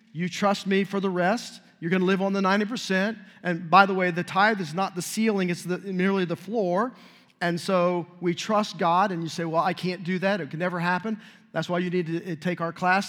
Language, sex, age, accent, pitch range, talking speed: English, male, 40-59, American, 175-220 Hz, 240 wpm